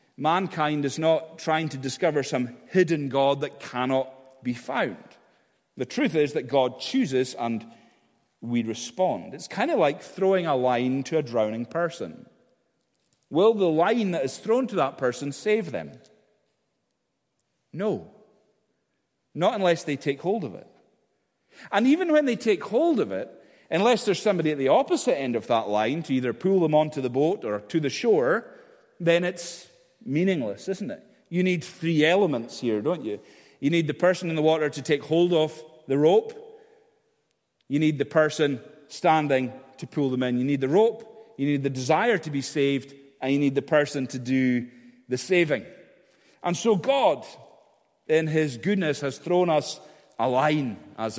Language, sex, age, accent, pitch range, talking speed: English, male, 40-59, British, 135-185 Hz, 170 wpm